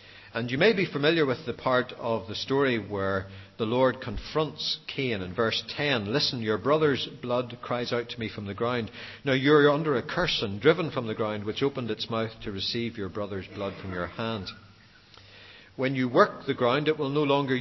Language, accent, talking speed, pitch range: English, Irish, 210 wpm, 105-135 Hz